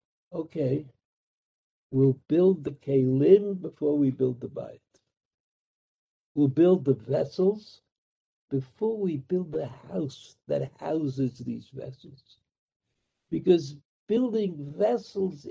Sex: male